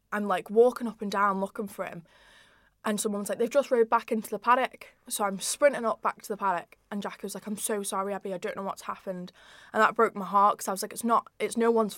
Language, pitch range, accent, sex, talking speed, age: English, 185-215 Hz, British, female, 270 wpm, 10-29